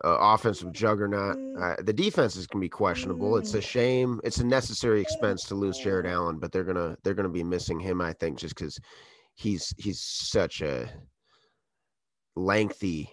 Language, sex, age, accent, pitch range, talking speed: English, male, 30-49, American, 85-110 Hz, 185 wpm